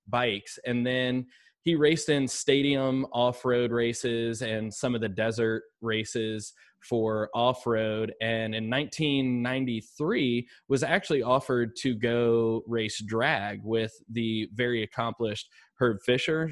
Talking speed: 120 wpm